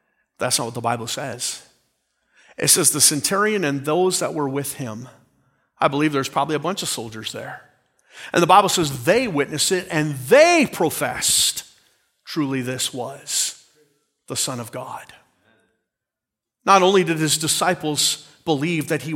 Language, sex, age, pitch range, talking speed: English, male, 40-59, 145-235 Hz, 155 wpm